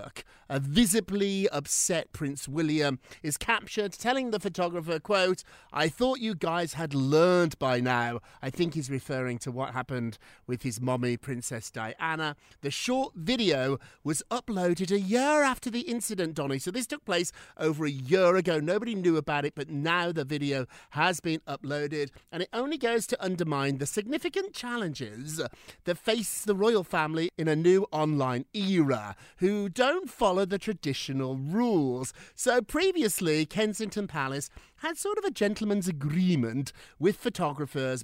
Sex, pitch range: male, 145-215 Hz